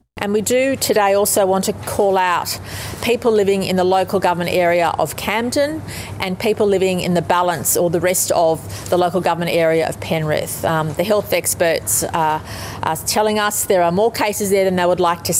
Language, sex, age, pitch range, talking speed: Bulgarian, female, 30-49, 175-215 Hz, 205 wpm